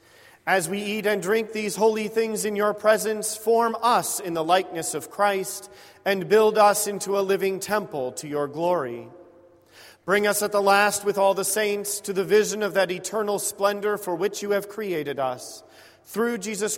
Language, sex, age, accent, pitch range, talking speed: English, male, 40-59, American, 150-200 Hz, 185 wpm